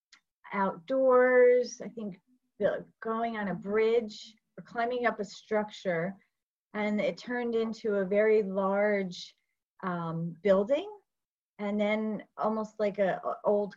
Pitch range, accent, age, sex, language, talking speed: 190-235 Hz, American, 30-49, female, English, 120 wpm